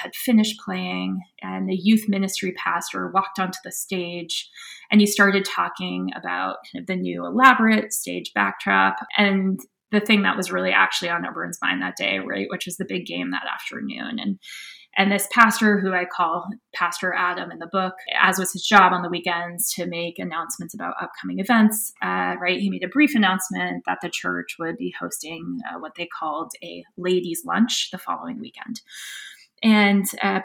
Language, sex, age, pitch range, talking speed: English, female, 20-39, 180-230 Hz, 180 wpm